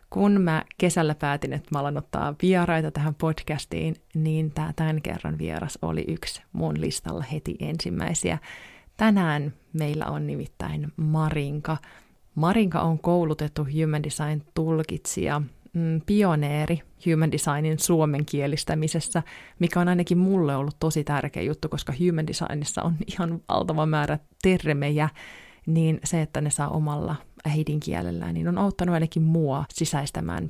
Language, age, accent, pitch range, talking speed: Finnish, 30-49, native, 150-170 Hz, 130 wpm